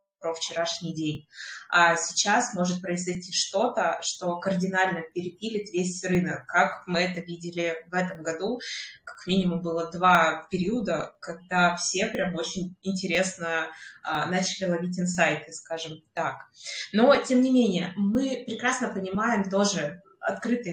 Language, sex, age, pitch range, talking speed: Russian, female, 20-39, 175-195 Hz, 125 wpm